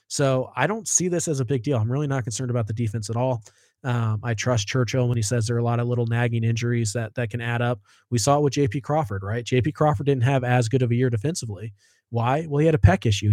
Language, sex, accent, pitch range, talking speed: English, male, American, 110-135 Hz, 280 wpm